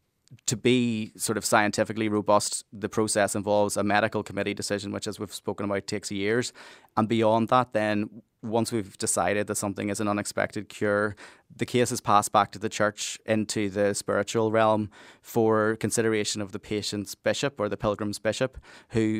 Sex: male